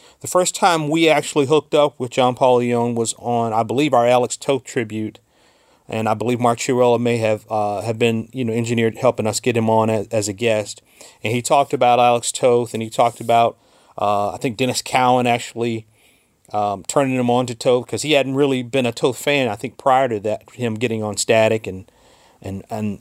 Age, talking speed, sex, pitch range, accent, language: 40-59, 215 wpm, male, 115-145 Hz, American, English